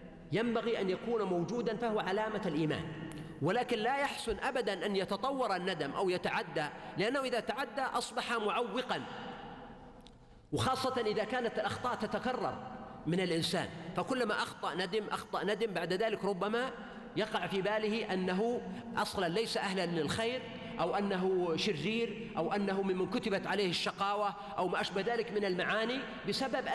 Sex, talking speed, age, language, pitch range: male, 135 wpm, 40-59, Arabic, 190-240 Hz